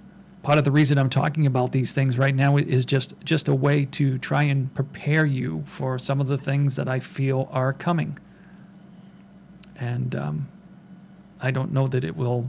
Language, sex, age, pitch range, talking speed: English, male, 40-59, 135-180 Hz, 185 wpm